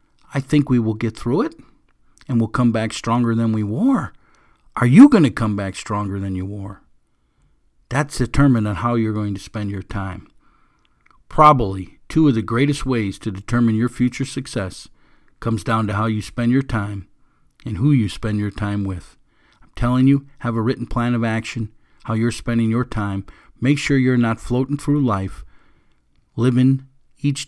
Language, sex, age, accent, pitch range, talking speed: English, male, 50-69, American, 100-125 Hz, 185 wpm